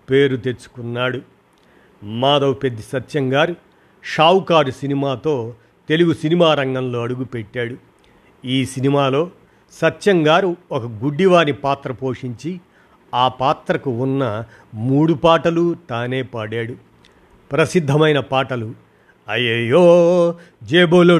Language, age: Telugu, 50-69